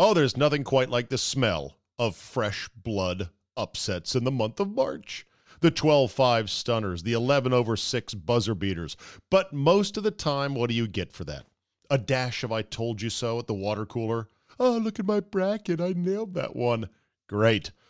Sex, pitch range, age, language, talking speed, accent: male, 110-150 Hz, 40-59, English, 185 wpm, American